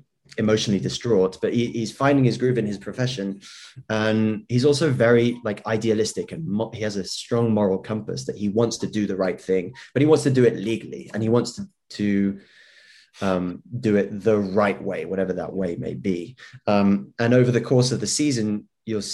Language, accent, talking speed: English, British, 205 wpm